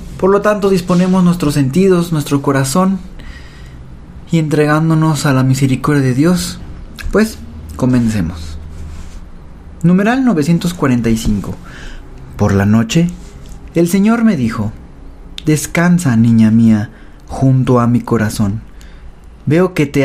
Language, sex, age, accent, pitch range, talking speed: Spanish, male, 40-59, Mexican, 105-175 Hz, 110 wpm